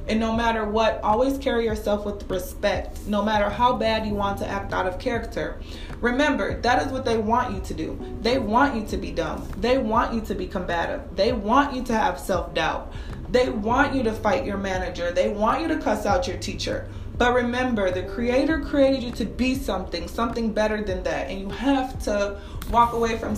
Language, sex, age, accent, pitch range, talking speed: English, female, 20-39, American, 185-225 Hz, 210 wpm